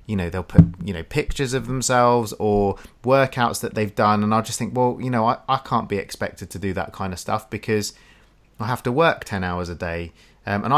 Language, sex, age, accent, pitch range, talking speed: English, male, 30-49, British, 100-120 Hz, 240 wpm